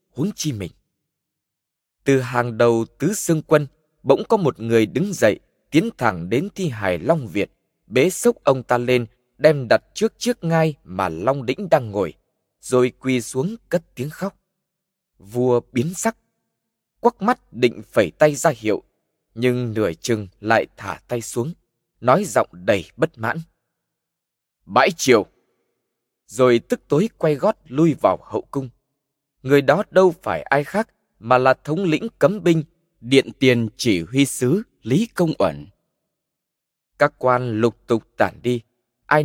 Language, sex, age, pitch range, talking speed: Vietnamese, male, 20-39, 120-165 Hz, 155 wpm